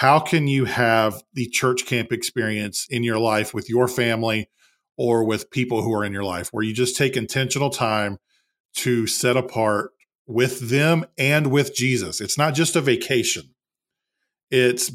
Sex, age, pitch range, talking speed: male, 40-59, 110-125 Hz, 170 wpm